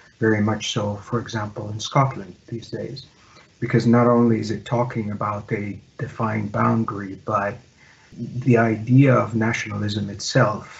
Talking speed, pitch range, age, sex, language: 140 wpm, 110-125 Hz, 50-69, male, English